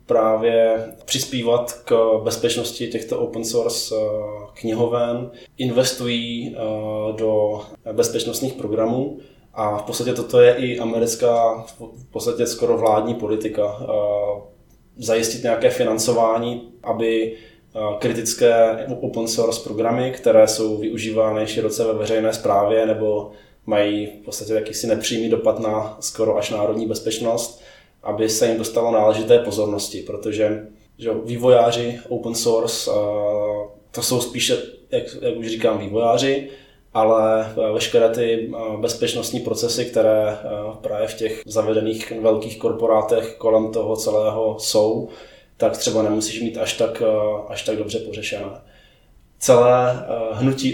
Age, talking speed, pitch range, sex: 20-39, 115 wpm, 110-120 Hz, male